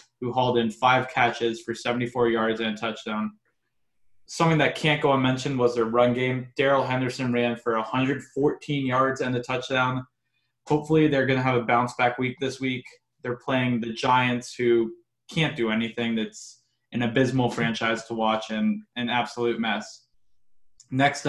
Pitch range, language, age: 120-130 Hz, English, 20-39